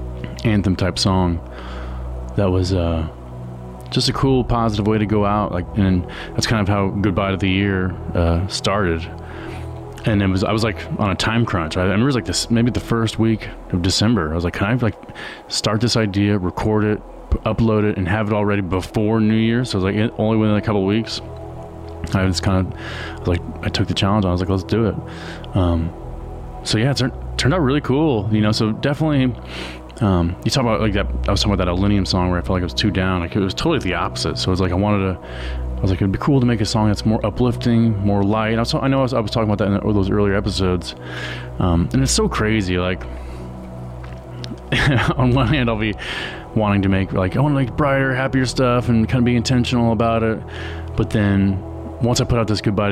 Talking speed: 240 wpm